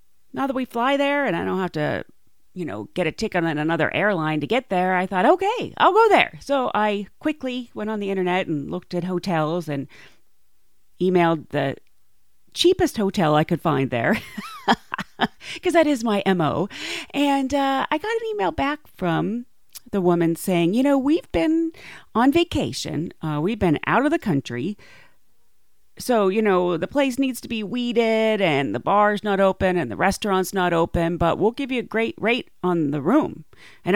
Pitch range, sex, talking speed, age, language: 165-270 Hz, female, 185 wpm, 40-59, English